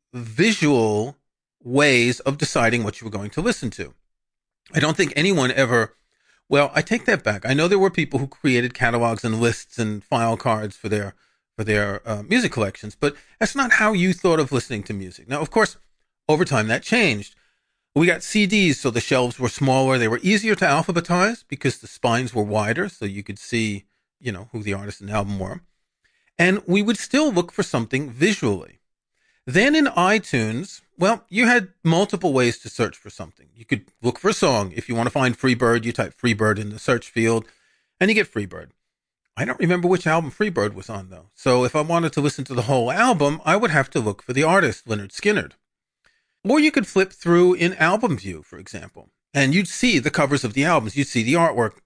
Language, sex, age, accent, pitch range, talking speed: English, male, 40-59, American, 110-170 Hz, 210 wpm